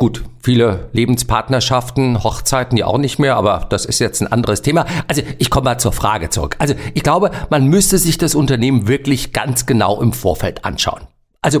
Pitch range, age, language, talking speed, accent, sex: 130-180 Hz, 50-69, German, 190 wpm, German, male